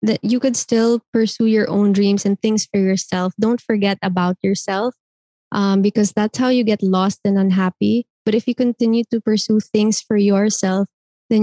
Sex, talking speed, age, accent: female, 185 wpm, 20-39, Filipino